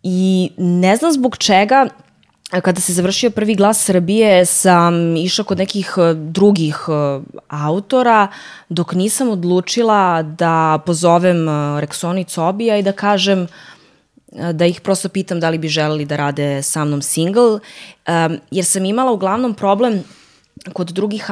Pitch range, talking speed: 160-200 Hz, 130 wpm